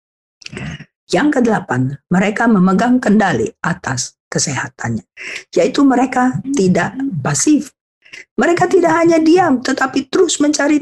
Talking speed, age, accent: 100 wpm, 50-69, native